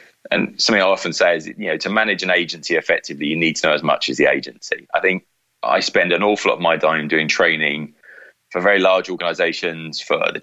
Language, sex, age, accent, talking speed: English, male, 20-39, British, 230 wpm